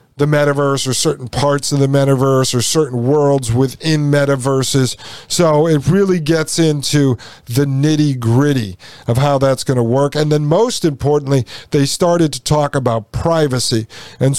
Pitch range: 130-150 Hz